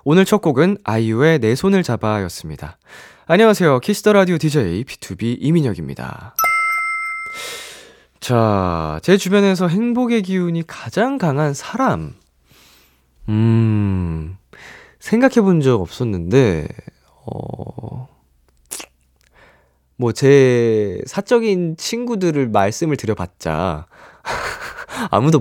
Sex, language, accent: male, Korean, native